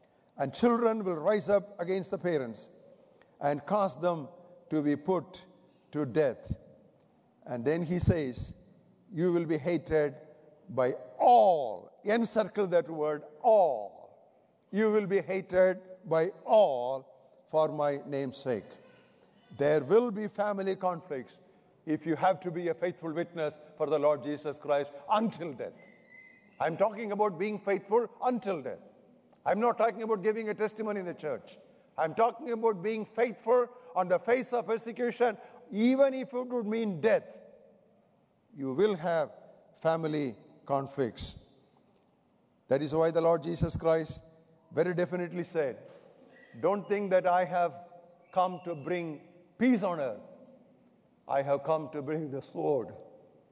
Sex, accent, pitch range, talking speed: male, Indian, 155-215 Hz, 140 wpm